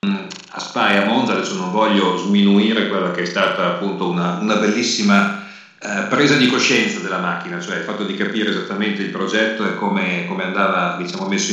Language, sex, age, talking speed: Italian, male, 50-69, 185 wpm